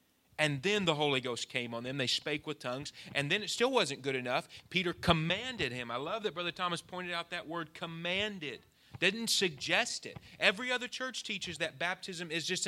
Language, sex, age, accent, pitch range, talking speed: English, male, 30-49, American, 135-180 Hz, 205 wpm